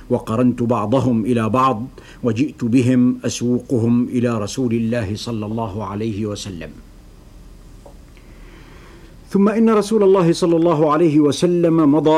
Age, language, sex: 60-79, Arabic, male